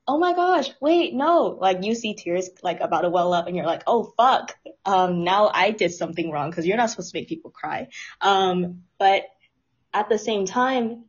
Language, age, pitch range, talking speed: English, 10-29, 175-225 Hz, 210 wpm